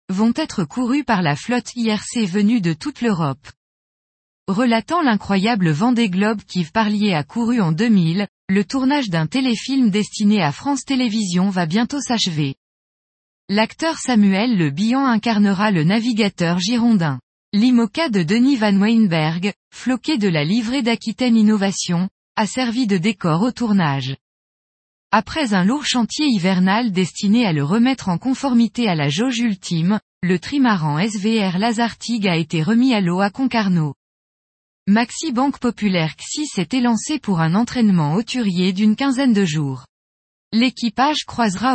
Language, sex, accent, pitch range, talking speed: French, female, French, 185-240 Hz, 140 wpm